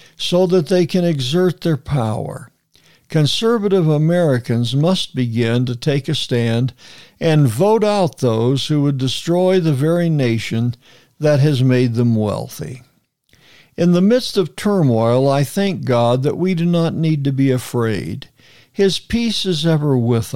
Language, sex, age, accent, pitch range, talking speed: English, male, 60-79, American, 125-175 Hz, 150 wpm